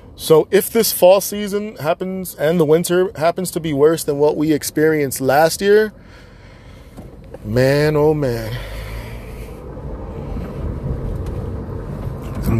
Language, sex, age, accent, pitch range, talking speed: English, male, 20-39, American, 120-170 Hz, 110 wpm